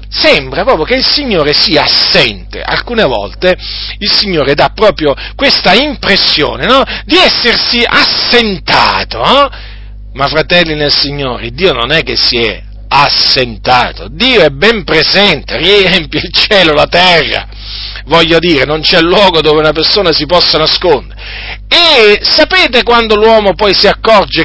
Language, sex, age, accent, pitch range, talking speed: Italian, male, 40-59, native, 155-230 Hz, 140 wpm